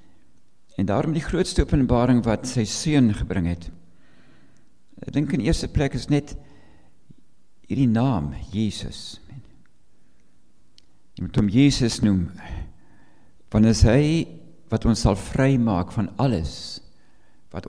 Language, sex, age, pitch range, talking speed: English, male, 50-69, 95-130 Hz, 120 wpm